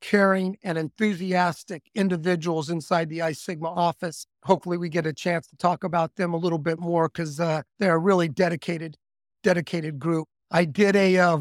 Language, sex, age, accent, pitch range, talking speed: English, male, 50-69, American, 175-210 Hz, 180 wpm